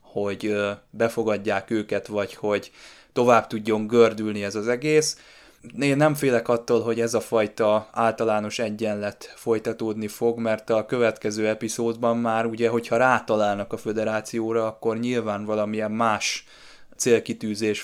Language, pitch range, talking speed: Hungarian, 105-115 Hz, 130 wpm